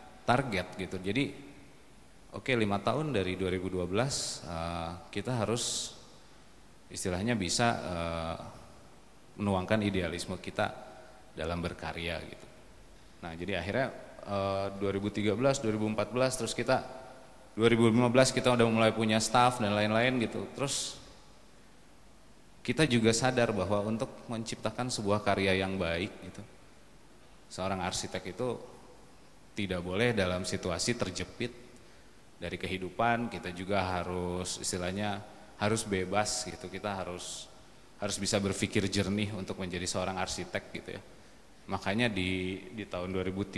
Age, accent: 30-49, native